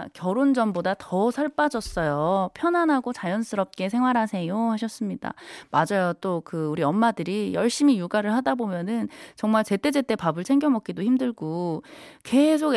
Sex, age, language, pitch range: female, 20-39, Korean, 160-245 Hz